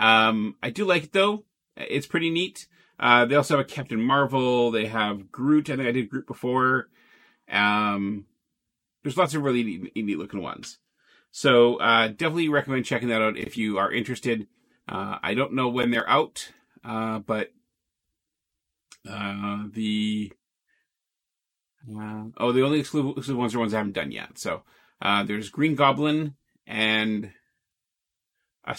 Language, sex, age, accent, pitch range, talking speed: English, male, 30-49, American, 110-145 Hz, 155 wpm